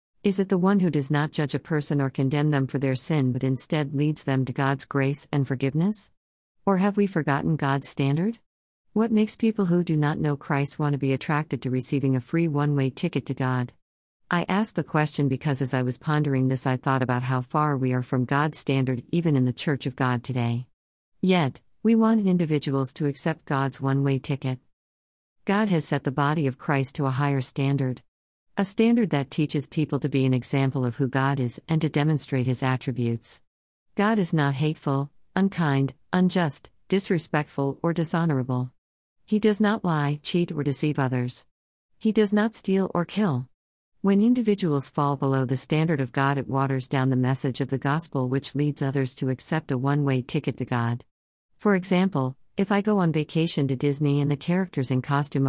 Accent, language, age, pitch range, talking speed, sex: American, English, 50-69, 130-165 Hz, 195 wpm, female